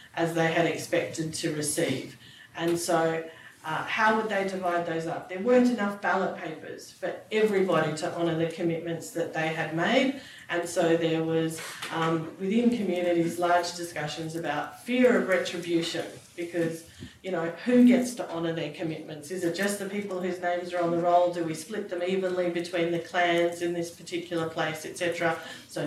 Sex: female